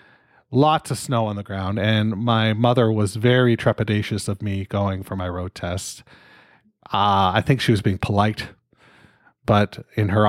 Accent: American